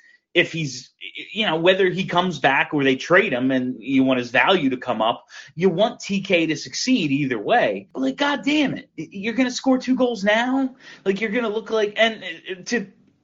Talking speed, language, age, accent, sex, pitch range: 220 wpm, English, 30-49, American, male, 130-190 Hz